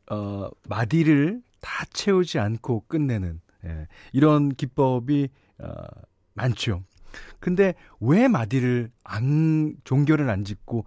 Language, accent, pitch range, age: Korean, native, 95-145 Hz, 40-59